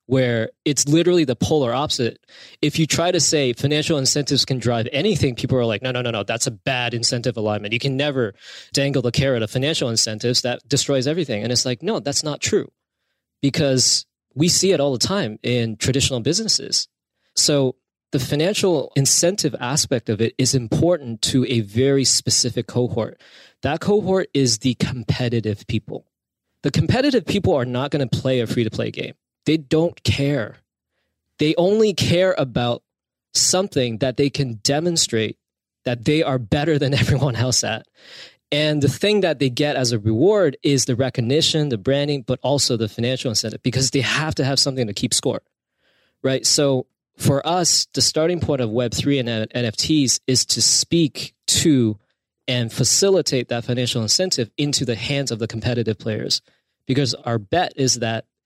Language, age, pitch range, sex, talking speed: English, 20-39, 120-145 Hz, male, 170 wpm